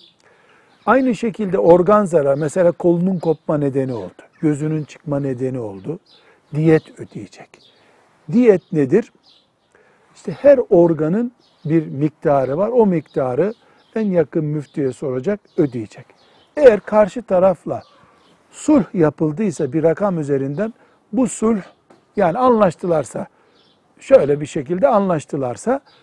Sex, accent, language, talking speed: male, native, Turkish, 105 wpm